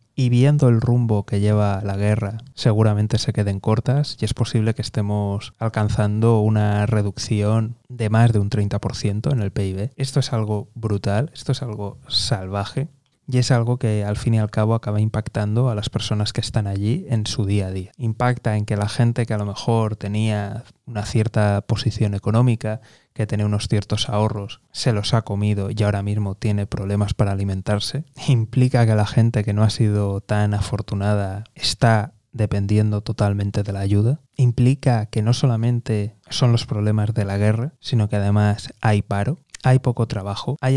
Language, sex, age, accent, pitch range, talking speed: Spanish, male, 20-39, Spanish, 105-120 Hz, 180 wpm